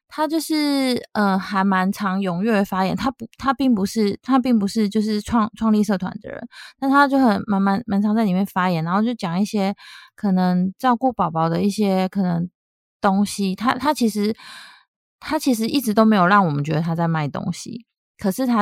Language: Chinese